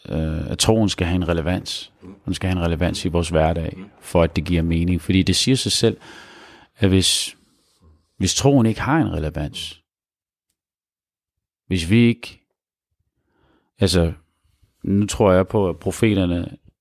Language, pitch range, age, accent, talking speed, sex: Danish, 85-100 Hz, 40-59, native, 155 wpm, male